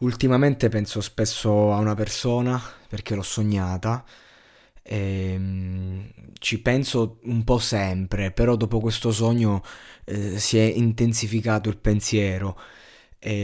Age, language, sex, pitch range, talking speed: 20-39, Italian, male, 105-115 Hz, 110 wpm